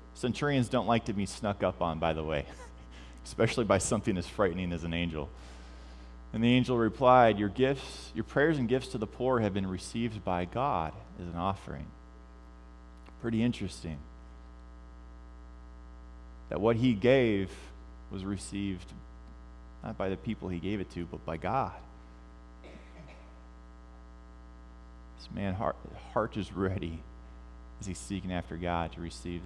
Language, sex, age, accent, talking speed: English, male, 30-49, American, 145 wpm